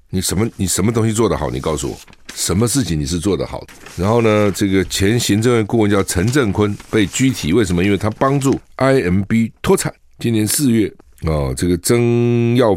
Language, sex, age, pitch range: Chinese, male, 50-69, 80-115 Hz